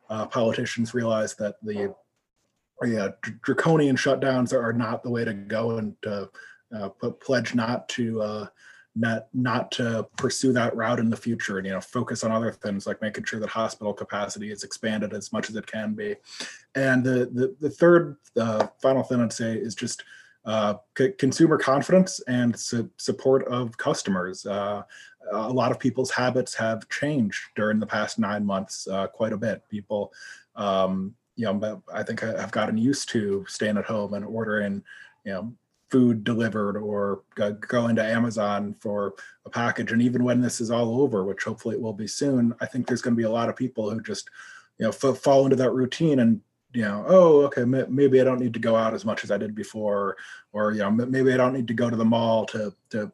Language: English